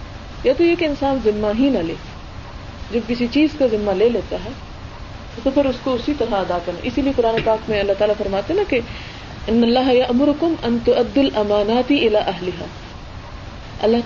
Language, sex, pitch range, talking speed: Urdu, female, 185-245 Hz, 175 wpm